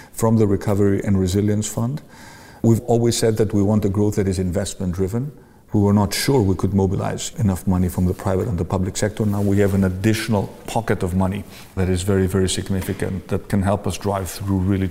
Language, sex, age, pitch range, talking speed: English, male, 50-69, 95-110 Hz, 215 wpm